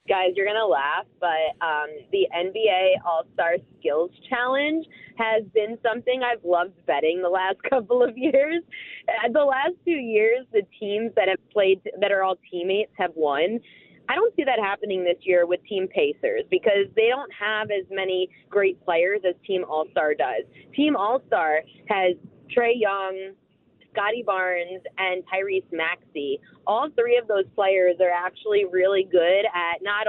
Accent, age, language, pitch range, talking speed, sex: American, 20-39, English, 185-250 Hz, 160 wpm, female